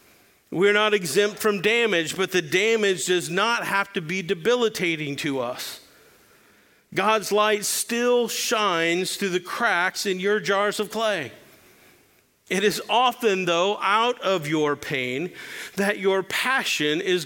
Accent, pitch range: American, 150-215 Hz